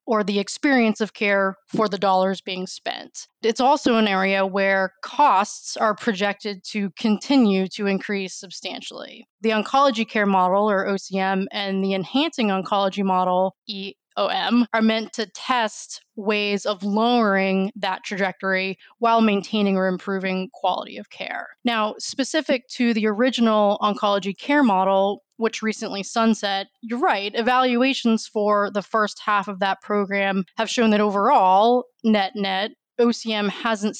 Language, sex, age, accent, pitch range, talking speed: English, female, 20-39, American, 195-225 Hz, 145 wpm